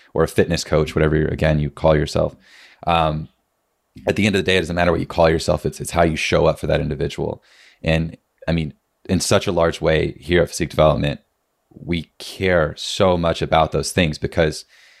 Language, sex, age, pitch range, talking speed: English, male, 30-49, 80-90 Hz, 210 wpm